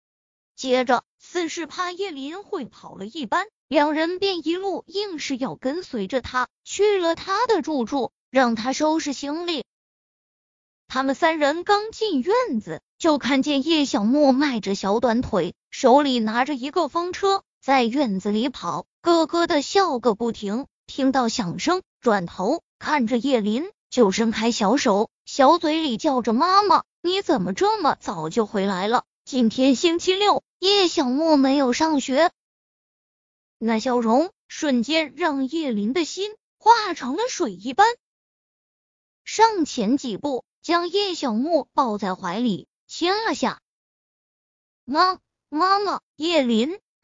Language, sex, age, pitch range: Chinese, female, 20-39, 245-350 Hz